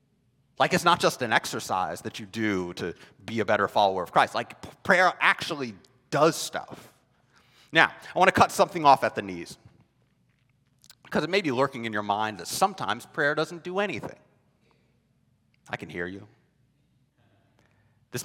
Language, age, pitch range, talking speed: English, 30-49, 125-195 Hz, 165 wpm